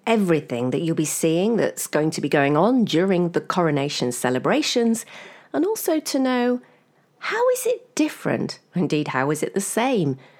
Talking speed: 165 wpm